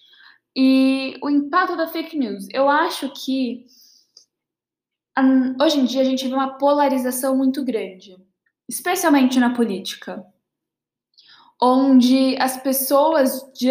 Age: 10-29